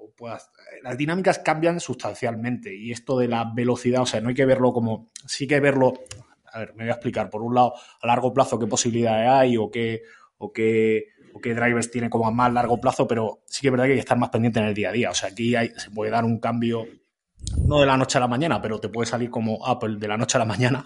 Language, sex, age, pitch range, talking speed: Spanish, male, 20-39, 115-135 Hz, 270 wpm